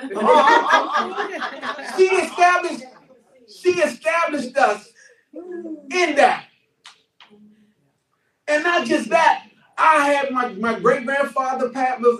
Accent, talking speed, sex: American, 105 wpm, male